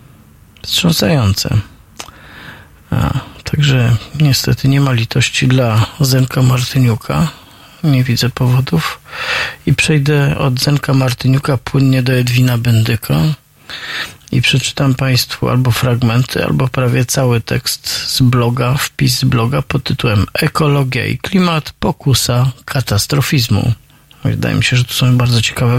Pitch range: 120-140 Hz